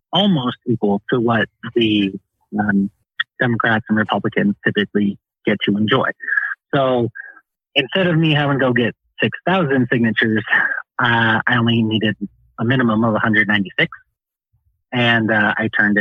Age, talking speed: 30-49, 130 wpm